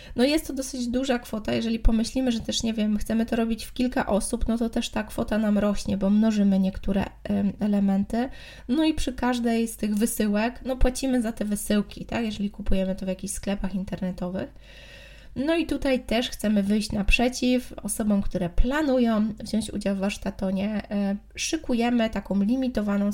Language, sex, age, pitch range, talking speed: Polish, female, 20-39, 200-240 Hz, 170 wpm